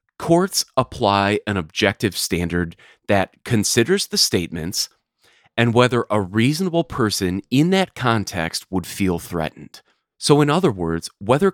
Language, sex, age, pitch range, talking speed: English, male, 30-49, 95-130 Hz, 130 wpm